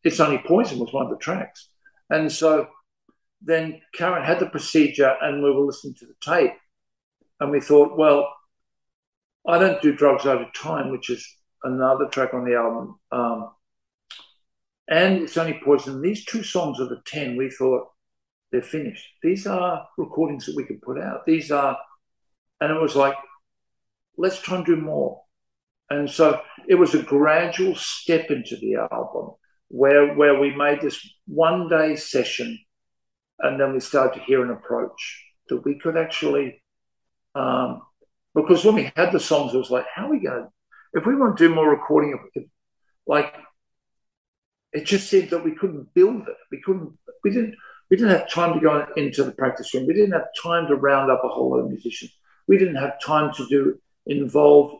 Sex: male